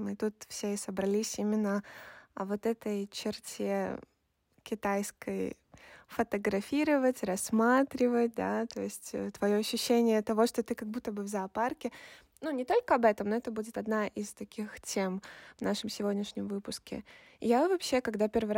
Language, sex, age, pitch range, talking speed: Russian, female, 20-39, 205-240 Hz, 150 wpm